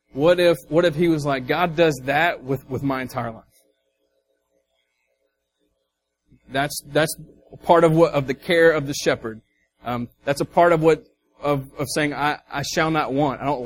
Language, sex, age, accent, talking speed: English, male, 30-49, American, 185 wpm